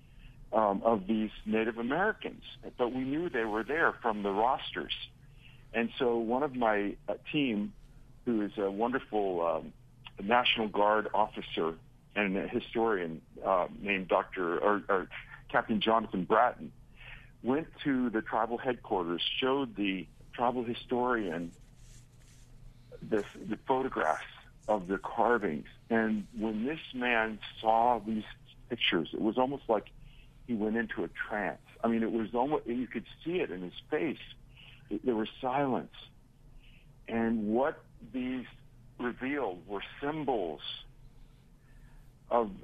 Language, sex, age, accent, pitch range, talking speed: English, male, 50-69, American, 110-130 Hz, 130 wpm